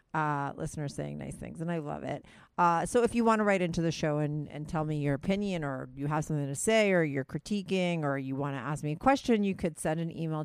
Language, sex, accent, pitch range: English, female, American, 145-175 Hz